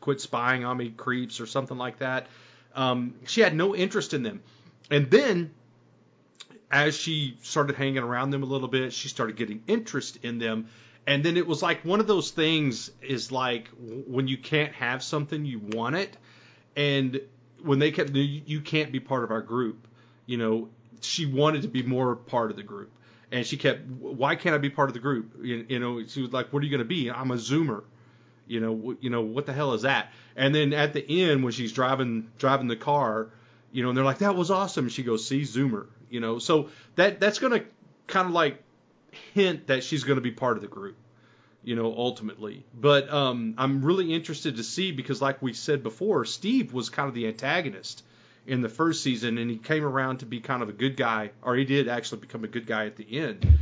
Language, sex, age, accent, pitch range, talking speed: English, male, 40-59, American, 115-145 Hz, 225 wpm